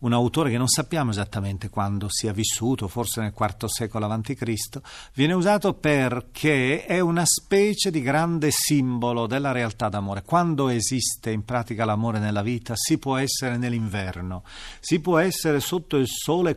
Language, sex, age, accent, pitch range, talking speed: Italian, male, 40-59, native, 115-150 Hz, 155 wpm